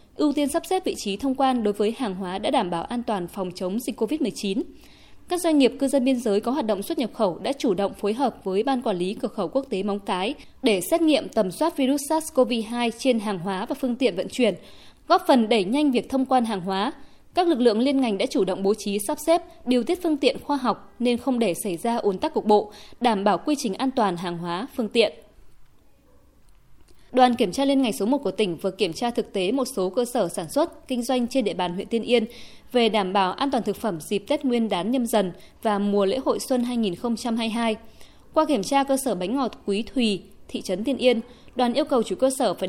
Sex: female